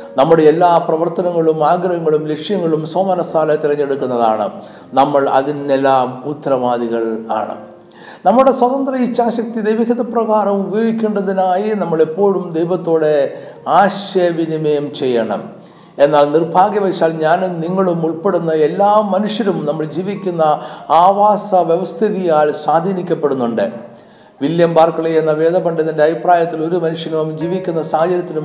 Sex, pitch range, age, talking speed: male, 150-200 Hz, 60-79, 90 wpm